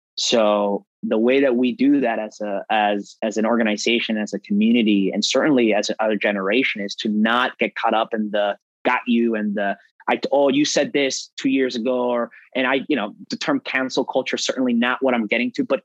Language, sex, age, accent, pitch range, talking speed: English, male, 20-39, American, 105-130 Hz, 220 wpm